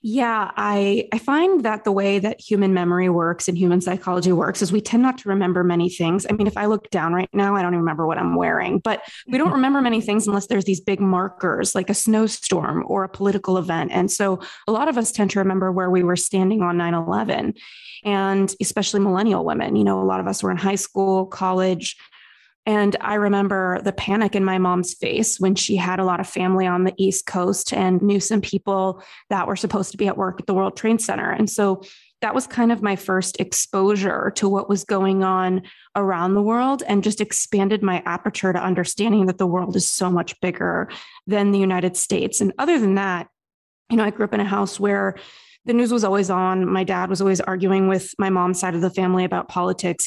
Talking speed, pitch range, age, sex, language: 225 wpm, 185-205 Hz, 20-39, female, English